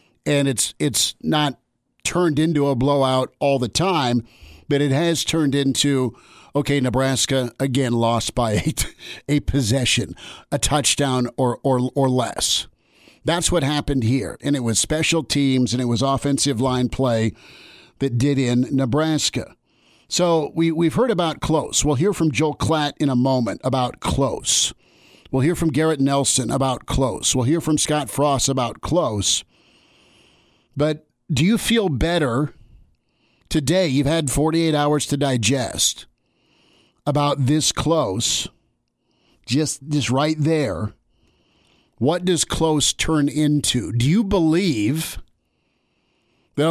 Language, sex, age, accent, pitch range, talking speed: English, male, 50-69, American, 125-155 Hz, 135 wpm